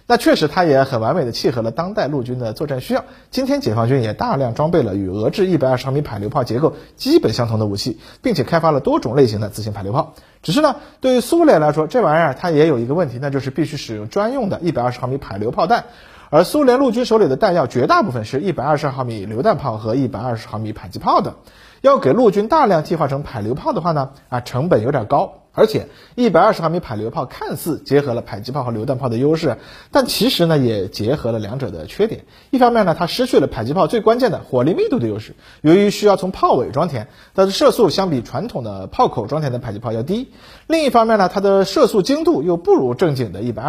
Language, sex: Chinese, male